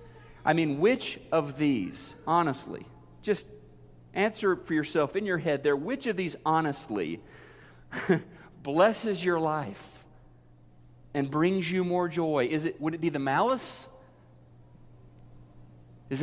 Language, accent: English, American